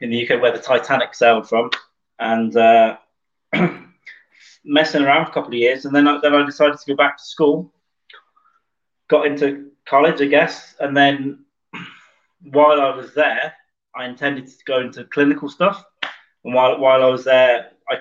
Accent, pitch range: British, 120-145 Hz